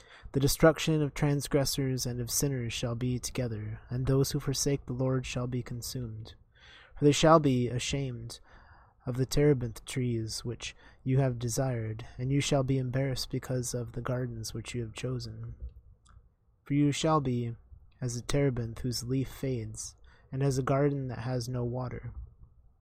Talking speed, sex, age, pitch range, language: 165 wpm, male, 20-39, 115-135 Hz, English